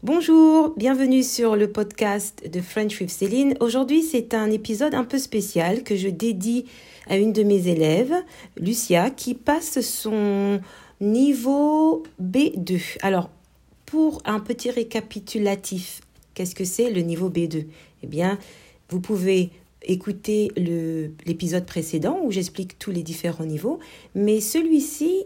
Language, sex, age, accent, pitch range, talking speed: French, female, 50-69, French, 175-235 Hz, 135 wpm